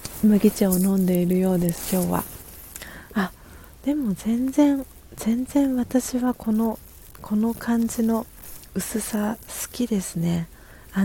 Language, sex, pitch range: Japanese, female, 180-220 Hz